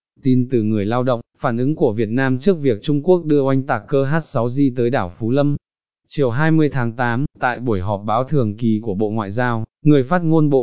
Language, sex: Vietnamese, male